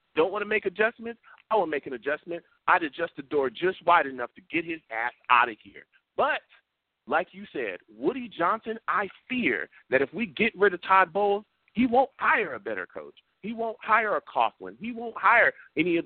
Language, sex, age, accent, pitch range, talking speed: English, male, 40-59, American, 165-250 Hz, 210 wpm